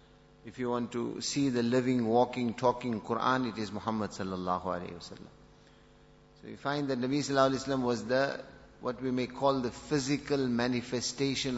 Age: 50-69